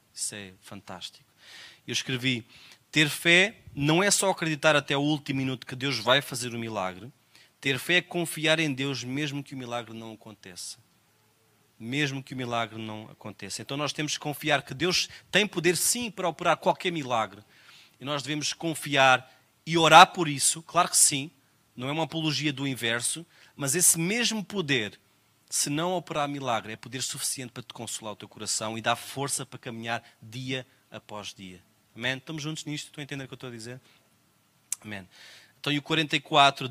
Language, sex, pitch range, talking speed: Portuguese, male, 115-155 Hz, 185 wpm